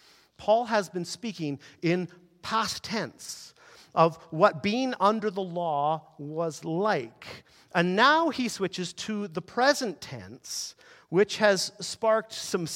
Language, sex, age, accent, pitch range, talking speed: English, male, 50-69, American, 155-200 Hz, 125 wpm